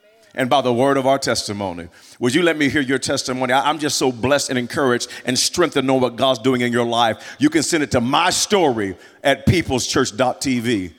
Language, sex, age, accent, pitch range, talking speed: English, male, 40-59, American, 135-175 Hz, 220 wpm